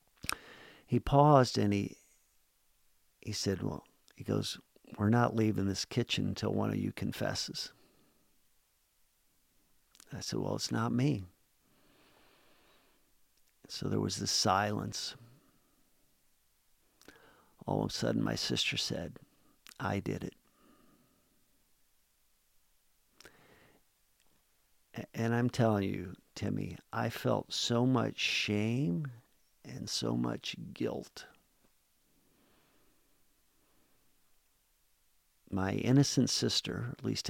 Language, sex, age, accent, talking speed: English, male, 50-69, American, 95 wpm